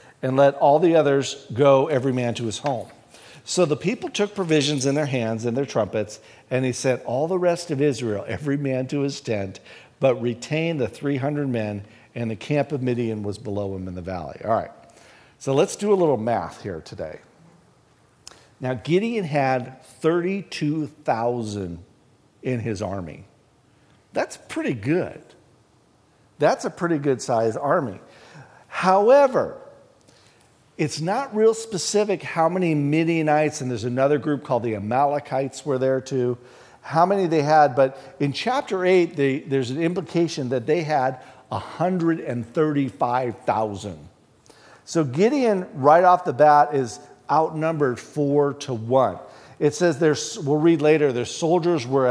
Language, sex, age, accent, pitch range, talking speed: English, male, 50-69, American, 125-165 Hz, 145 wpm